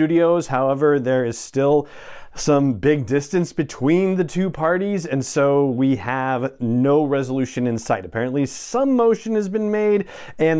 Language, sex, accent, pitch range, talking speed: English, male, American, 120-165 Hz, 155 wpm